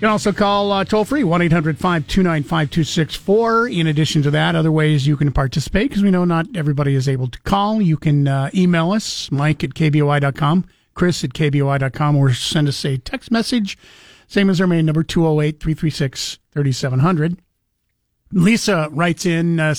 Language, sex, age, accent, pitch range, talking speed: English, male, 50-69, American, 150-190 Hz, 160 wpm